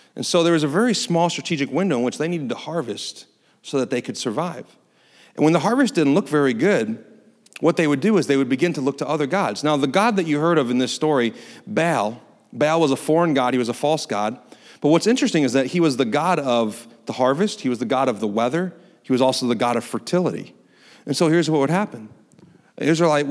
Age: 40-59